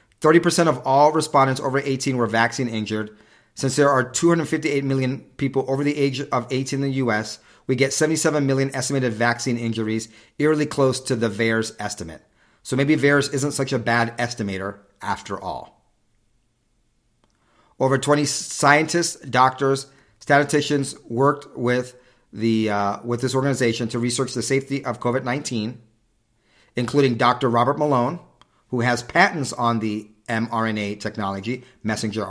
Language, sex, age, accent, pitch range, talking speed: English, male, 40-59, American, 110-135 Hz, 140 wpm